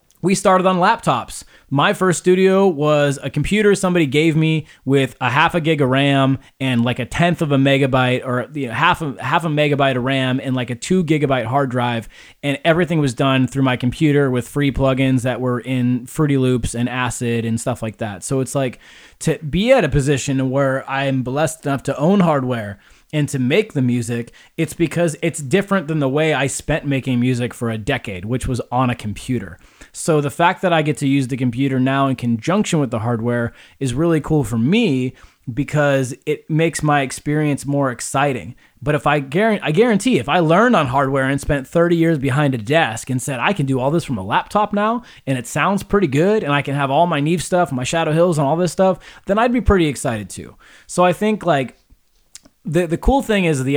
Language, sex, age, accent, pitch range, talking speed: English, male, 20-39, American, 125-165 Hz, 220 wpm